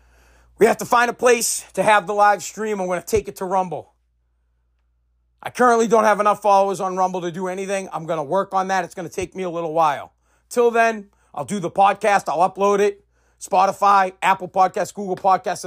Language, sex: English, male